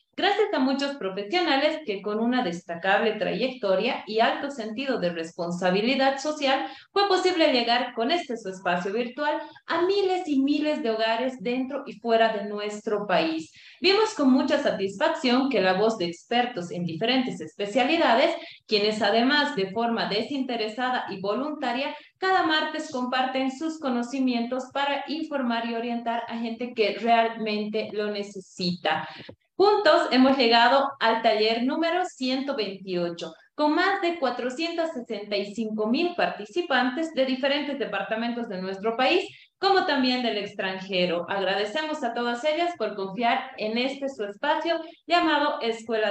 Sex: female